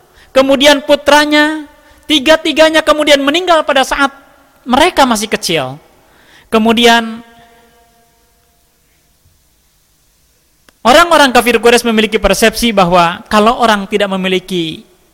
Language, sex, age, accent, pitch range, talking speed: Indonesian, male, 40-59, native, 190-295 Hz, 85 wpm